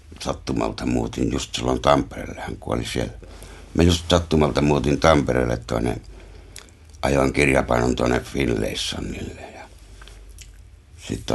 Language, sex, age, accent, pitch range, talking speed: Finnish, male, 60-79, native, 75-90 Hz, 95 wpm